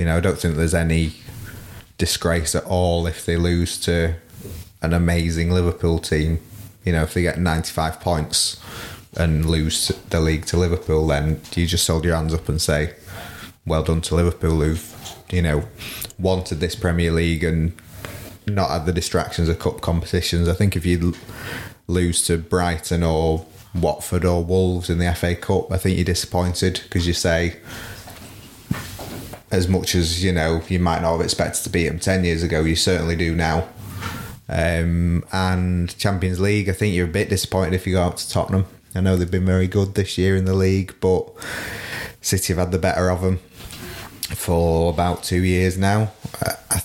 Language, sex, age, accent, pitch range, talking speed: English, male, 20-39, British, 85-95 Hz, 180 wpm